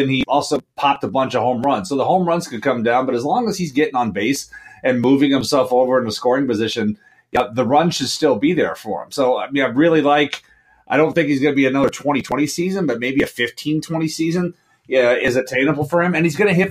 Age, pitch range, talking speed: 30-49, 120-155 Hz, 260 wpm